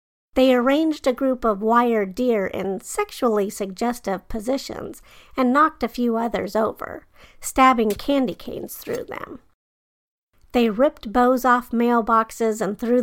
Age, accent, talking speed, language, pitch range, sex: 50-69, American, 135 wpm, English, 220-260 Hz, female